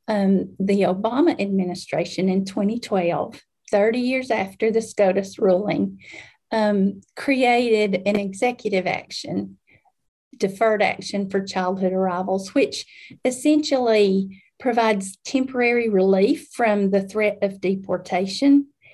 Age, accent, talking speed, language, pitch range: 40-59, American, 100 wpm, English, 190-230 Hz